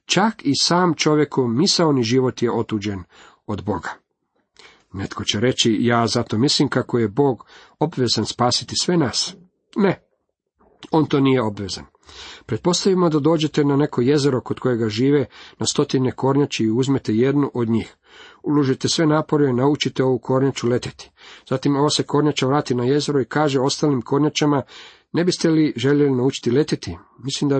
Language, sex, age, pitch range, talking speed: Croatian, male, 50-69, 120-155 Hz, 155 wpm